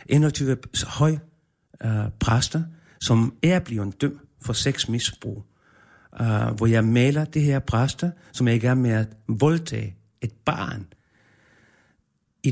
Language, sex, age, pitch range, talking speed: Danish, male, 60-79, 115-140 Hz, 130 wpm